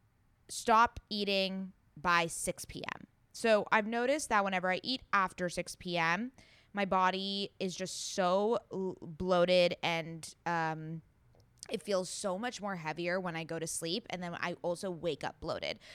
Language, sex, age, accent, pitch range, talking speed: English, female, 20-39, American, 160-205 Hz, 155 wpm